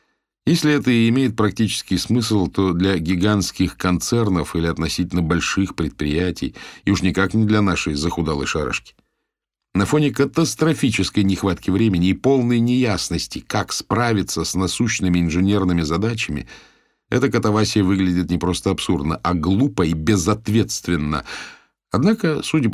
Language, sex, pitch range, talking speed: Russian, male, 85-115 Hz, 125 wpm